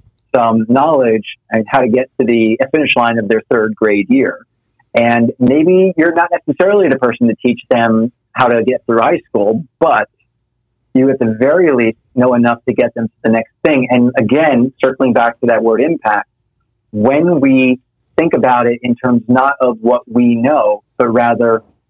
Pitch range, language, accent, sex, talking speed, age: 115-125 Hz, English, American, male, 185 wpm, 40-59